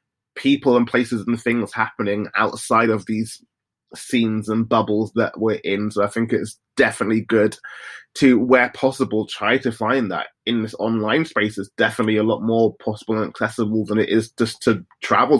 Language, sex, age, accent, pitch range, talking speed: English, male, 20-39, British, 105-120 Hz, 180 wpm